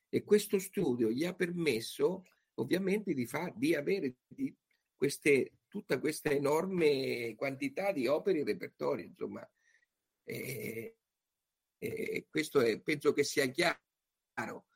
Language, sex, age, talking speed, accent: Italian, male, 50-69, 120 wpm, native